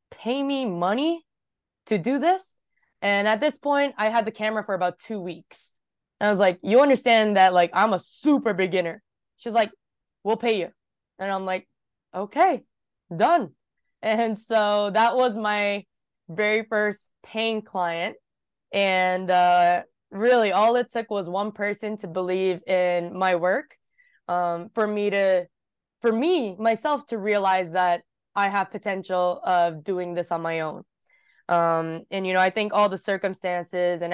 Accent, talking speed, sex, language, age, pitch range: American, 160 wpm, female, English, 20-39, 175-215 Hz